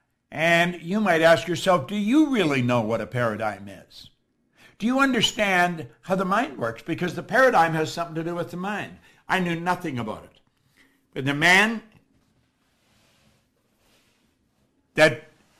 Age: 60-79